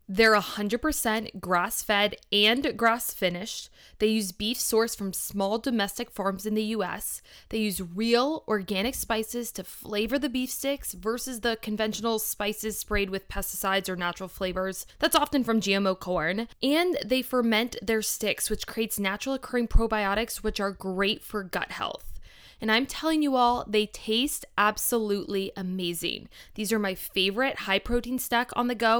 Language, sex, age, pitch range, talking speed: English, female, 20-39, 200-235 Hz, 155 wpm